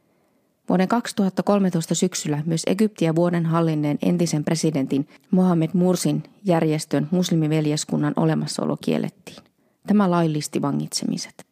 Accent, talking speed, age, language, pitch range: native, 95 wpm, 30-49, Finnish, 150-185 Hz